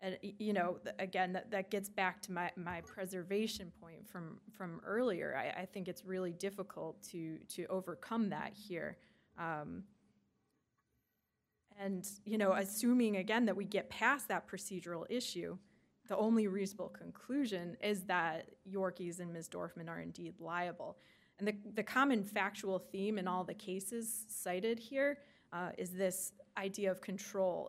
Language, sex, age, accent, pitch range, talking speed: English, female, 20-39, American, 180-205 Hz, 155 wpm